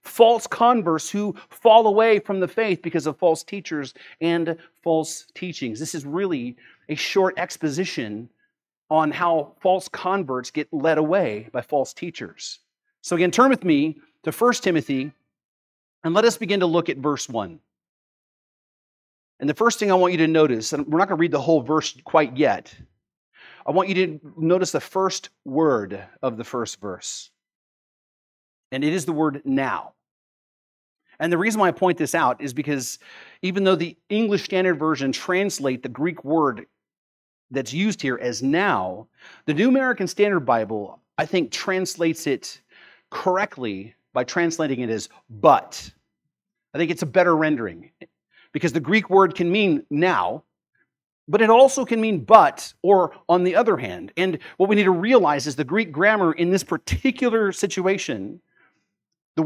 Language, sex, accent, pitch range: English, male, American, 150-195 Hz